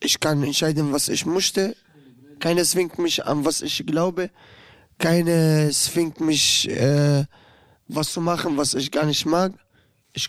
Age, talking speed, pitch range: 20-39, 150 wpm, 145-180 Hz